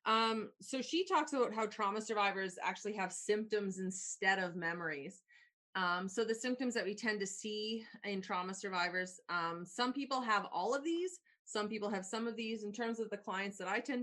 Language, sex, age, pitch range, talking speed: English, female, 30-49, 195-260 Hz, 200 wpm